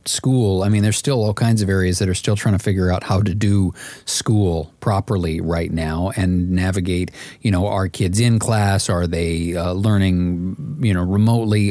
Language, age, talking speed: English, 40-59, 195 wpm